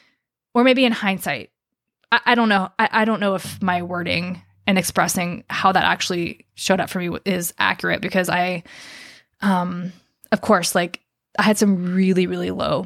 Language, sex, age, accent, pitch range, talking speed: English, female, 20-39, American, 180-220 Hz, 175 wpm